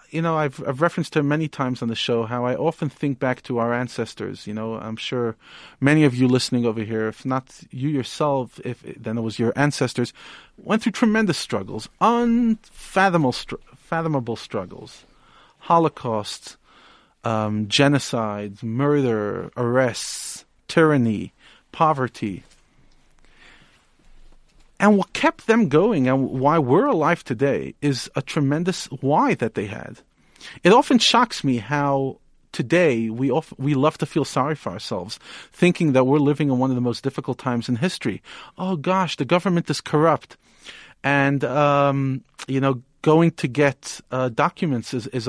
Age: 40-59